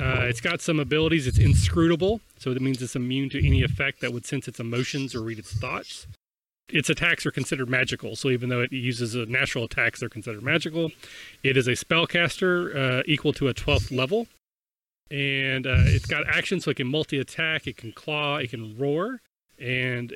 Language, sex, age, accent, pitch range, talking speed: English, male, 30-49, American, 120-145 Hz, 190 wpm